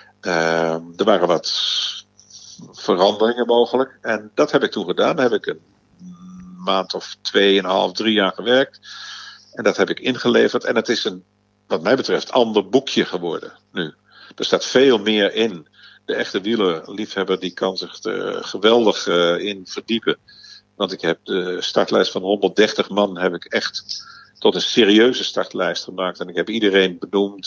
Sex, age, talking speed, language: male, 50-69, 170 wpm, Dutch